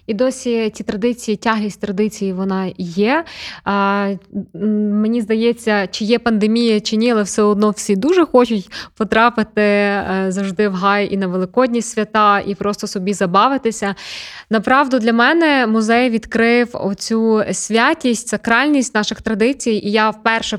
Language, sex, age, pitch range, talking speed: Ukrainian, female, 20-39, 190-225 Hz, 135 wpm